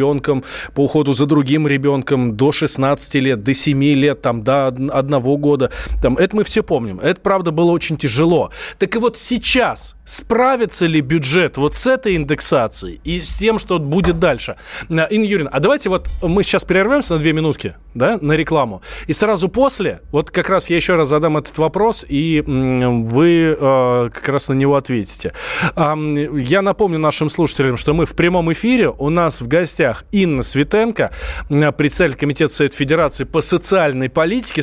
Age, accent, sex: 20-39, native, male